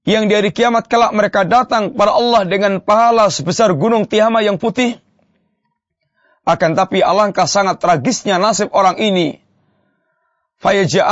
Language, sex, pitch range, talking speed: English, male, 185-235 Hz, 130 wpm